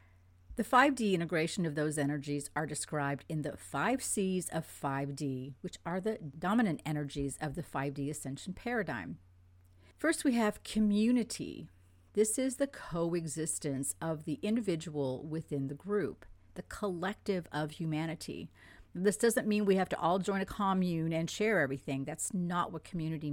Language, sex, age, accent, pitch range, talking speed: English, female, 50-69, American, 140-185 Hz, 150 wpm